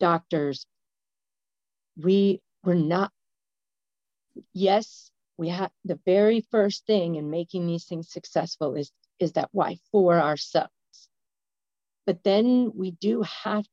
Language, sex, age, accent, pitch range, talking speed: English, female, 40-59, American, 160-205 Hz, 120 wpm